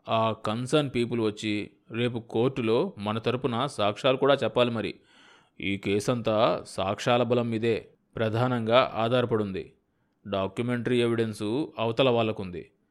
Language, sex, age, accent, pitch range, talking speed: Telugu, male, 20-39, native, 105-125 Hz, 110 wpm